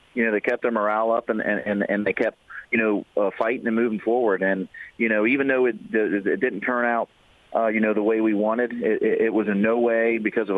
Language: English